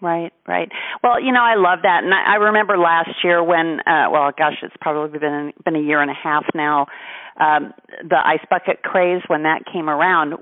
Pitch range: 145-180 Hz